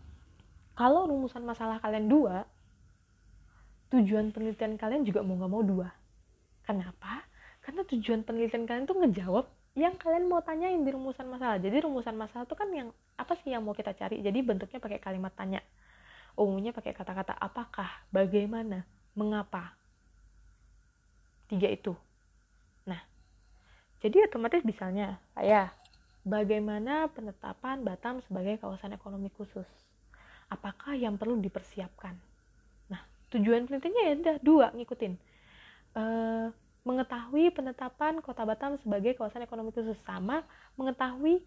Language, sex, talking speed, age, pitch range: Indonesian, female, 125 wpm, 20-39, 195-265 Hz